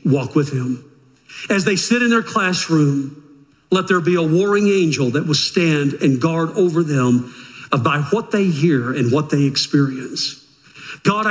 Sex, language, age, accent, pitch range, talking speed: male, English, 50-69, American, 140-185 Hz, 165 wpm